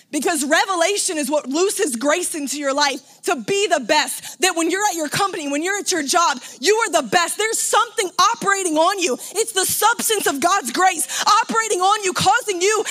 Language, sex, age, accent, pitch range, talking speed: English, female, 20-39, American, 315-400 Hz, 205 wpm